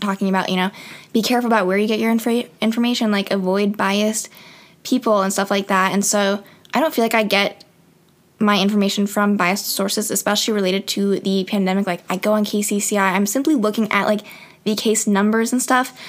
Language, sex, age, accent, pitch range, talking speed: English, female, 10-29, American, 200-230 Hz, 200 wpm